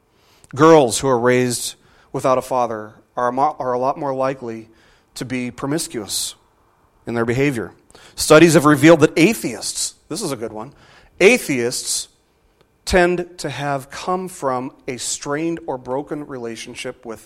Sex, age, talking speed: male, 40-59, 140 wpm